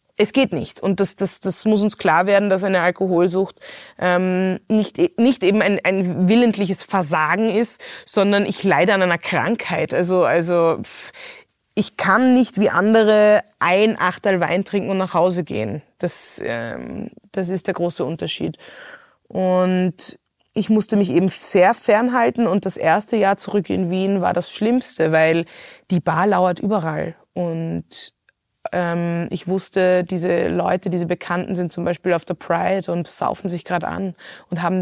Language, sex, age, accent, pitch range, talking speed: German, female, 20-39, German, 175-210 Hz, 160 wpm